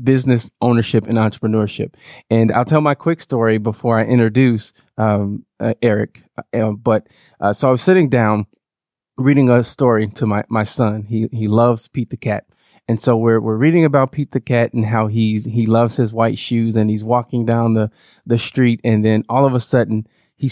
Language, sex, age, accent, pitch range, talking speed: English, male, 20-39, American, 110-130 Hz, 200 wpm